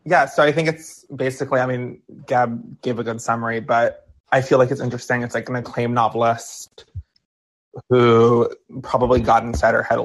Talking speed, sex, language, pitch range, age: 185 wpm, male, English, 115-125 Hz, 20-39